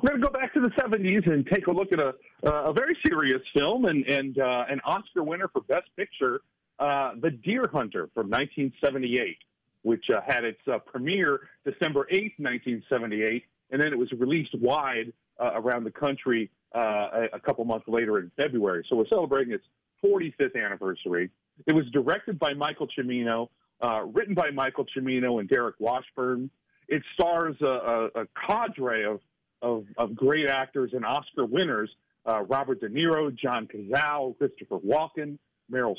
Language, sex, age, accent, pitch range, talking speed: English, male, 40-59, American, 125-180 Hz, 170 wpm